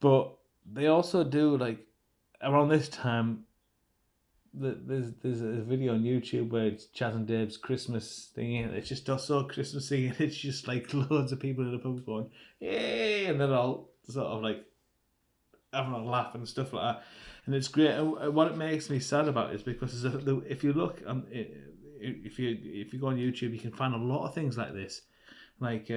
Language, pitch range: English, 110-135 Hz